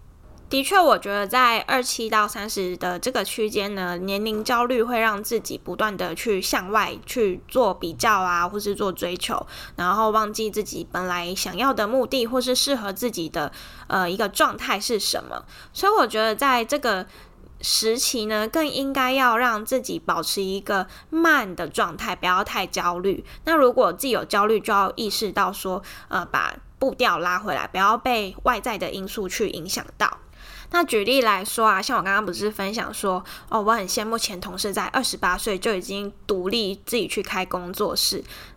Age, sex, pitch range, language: 20-39, female, 195-255 Hz, Chinese